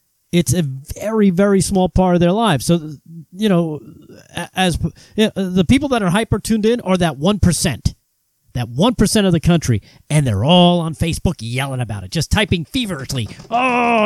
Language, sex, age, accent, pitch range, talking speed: English, male, 40-59, American, 165-230 Hz, 170 wpm